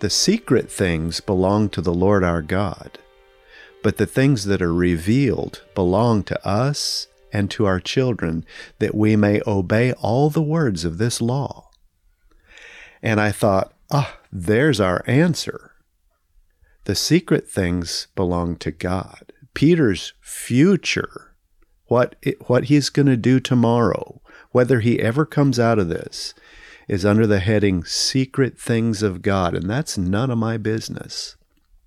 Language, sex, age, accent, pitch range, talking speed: English, male, 50-69, American, 90-115 Hz, 145 wpm